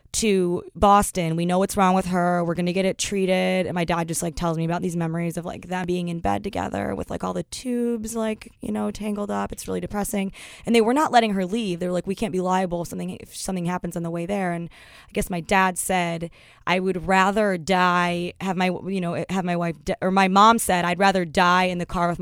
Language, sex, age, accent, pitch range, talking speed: English, female, 20-39, American, 175-200 Hz, 250 wpm